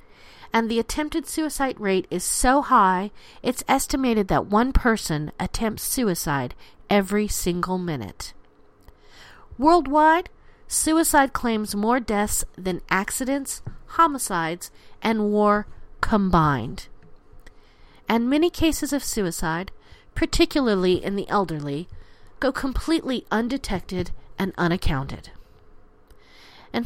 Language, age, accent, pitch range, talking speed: English, 40-59, American, 175-245 Hz, 100 wpm